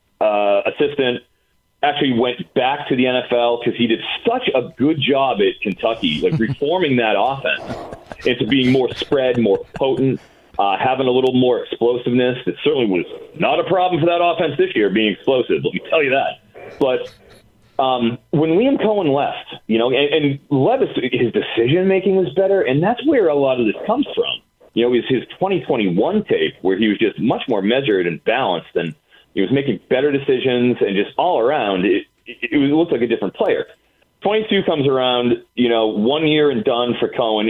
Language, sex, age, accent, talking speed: English, male, 40-59, American, 195 wpm